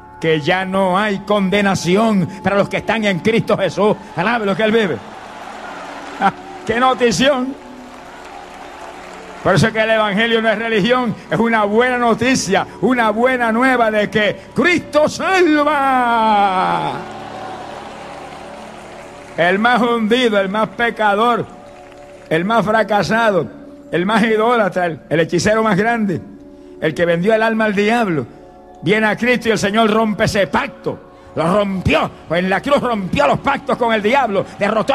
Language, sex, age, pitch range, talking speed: Spanish, male, 60-79, 190-245 Hz, 145 wpm